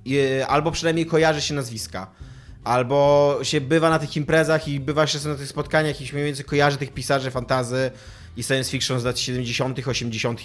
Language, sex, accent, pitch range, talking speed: Polish, male, native, 130-170 Hz, 185 wpm